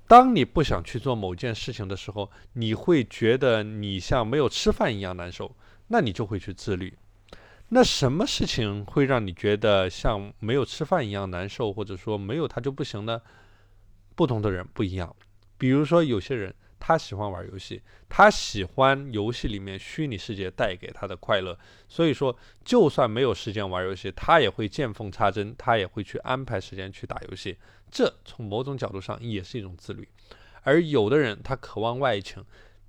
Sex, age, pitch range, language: male, 20-39, 100-130 Hz, Chinese